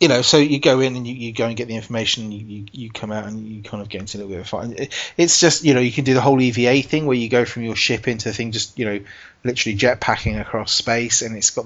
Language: English